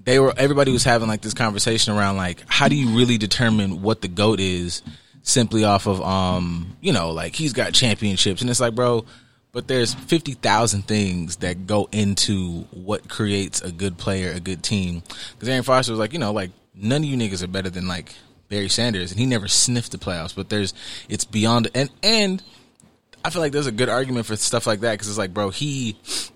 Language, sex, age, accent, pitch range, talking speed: English, male, 20-39, American, 95-120 Hz, 215 wpm